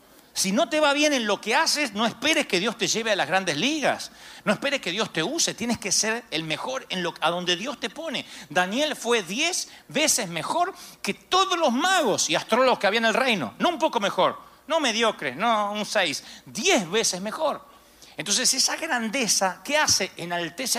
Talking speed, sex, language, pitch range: 205 wpm, male, Spanish, 200-285 Hz